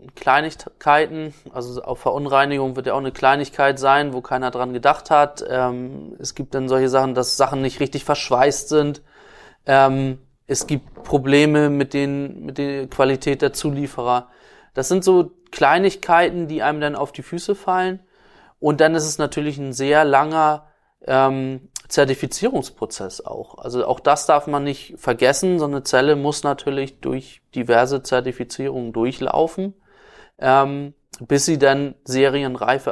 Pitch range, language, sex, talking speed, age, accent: 130-150 Hz, German, male, 145 wpm, 20-39, German